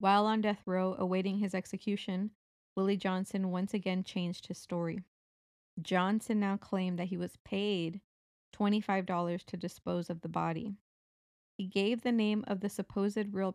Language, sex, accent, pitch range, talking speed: English, female, American, 180-205 Hz, 155 wpm